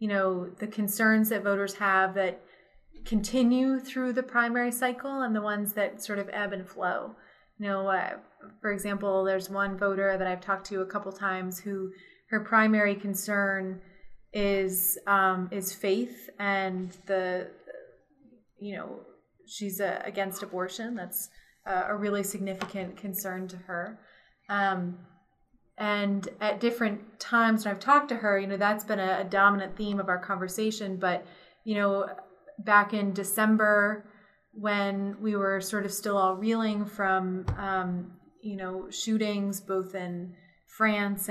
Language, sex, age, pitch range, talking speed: English, female, 20-39, 185-210 Hz, 150 wpm